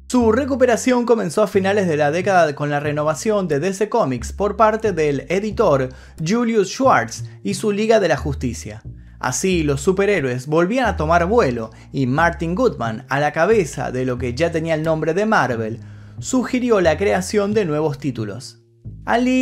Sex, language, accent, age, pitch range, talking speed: male, Spanish, Argentinian, 30-49, 145-220 Hz, 170 wpm